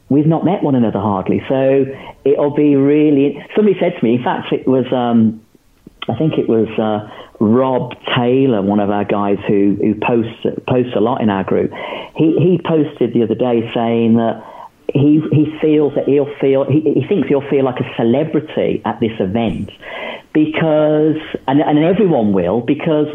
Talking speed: 180 wpm